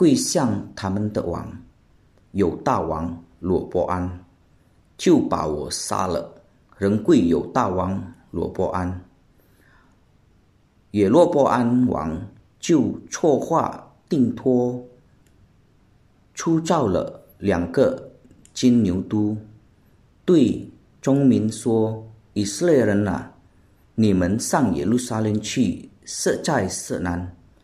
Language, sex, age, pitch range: Indonesian, male, 40-59, 90-125 Hz